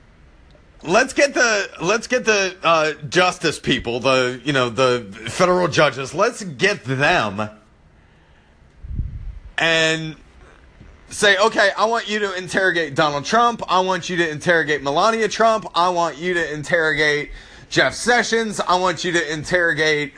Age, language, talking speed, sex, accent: 30-49, English, 140 wpm, male, American